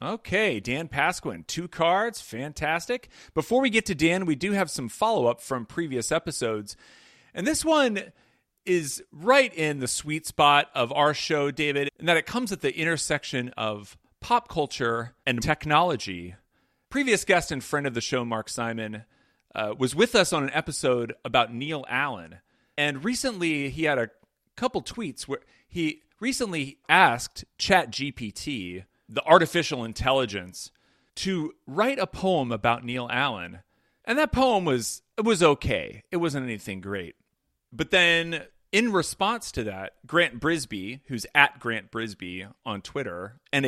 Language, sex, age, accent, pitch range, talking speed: English, male, 40-59, American, 115-170 Hz, 155 wpm